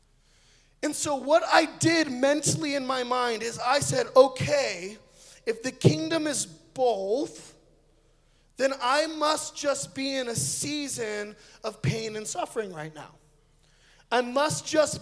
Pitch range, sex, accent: 220-295 Hz, male, American